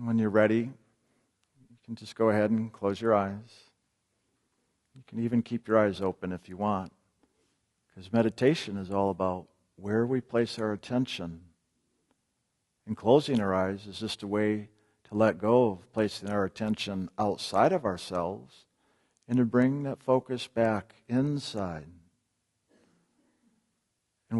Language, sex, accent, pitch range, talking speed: English, male, American, 100-115 Hz, 145 wpm